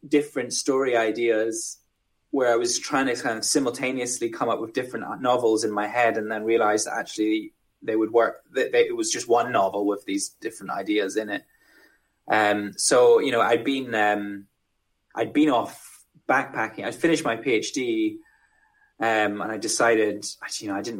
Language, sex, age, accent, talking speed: English, male, 10-29, British, 175 wpm